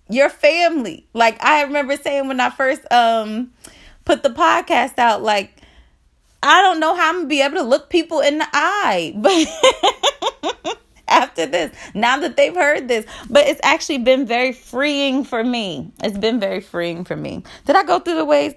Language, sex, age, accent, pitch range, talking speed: English, female, 20-39, American, 185-275 Hz, 185 wpm